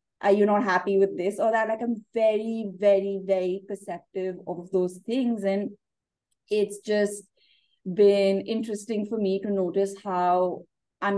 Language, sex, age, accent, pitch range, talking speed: English, female, 20-39, Indian, 180-205 Hz, 150 wpm